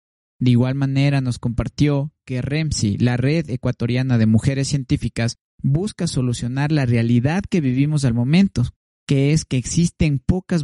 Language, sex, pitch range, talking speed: Spanish, male, 120-150 Hz, 145 wpm